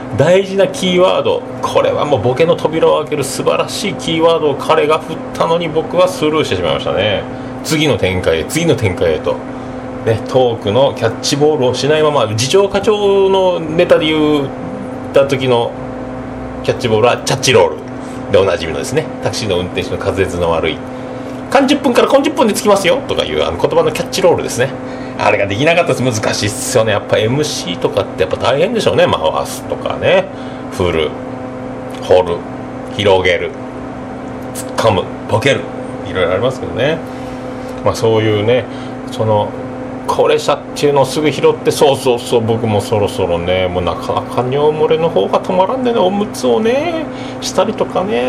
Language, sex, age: Japanese, male, 40-59